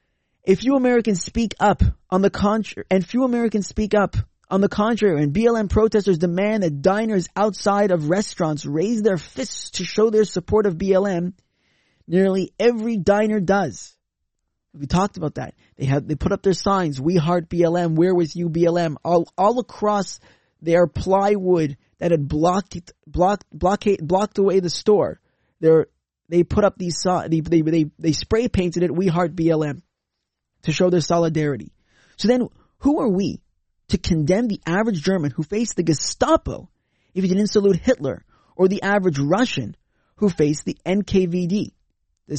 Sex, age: male, 20-39